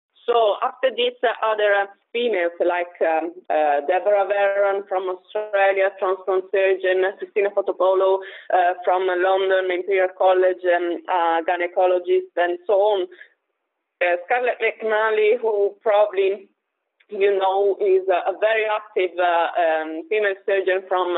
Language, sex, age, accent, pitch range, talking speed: Dutch, female, 20-39, Italian, 180-245 Hz, 135 wpm